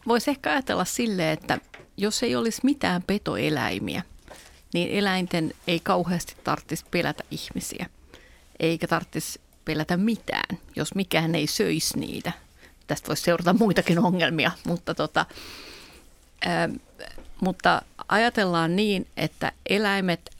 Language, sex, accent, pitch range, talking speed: Finnish, female, native, 165-200 Hz, 115 wpm